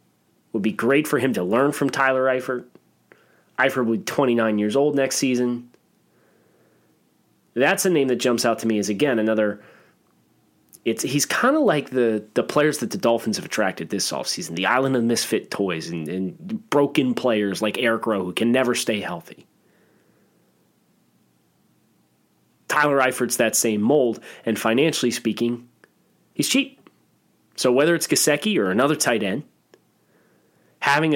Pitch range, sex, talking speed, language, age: 110-140 Hz, male, 155 wpm, English, 30-49